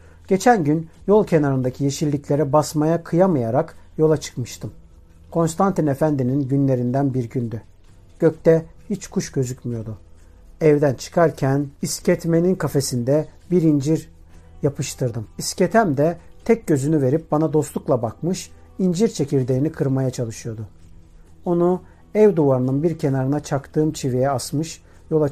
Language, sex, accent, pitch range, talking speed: Turkish, male, native, 115-170 Hz, 110 wpm